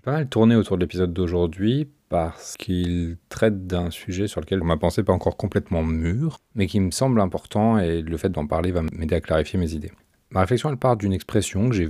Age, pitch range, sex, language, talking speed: 40-59, 85-110 Hz, male, French, 225 wpm